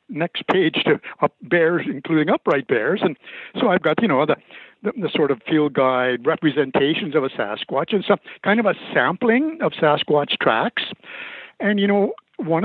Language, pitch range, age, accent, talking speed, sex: English, 150-220 Hz, 60-79, American, 180 wpm, male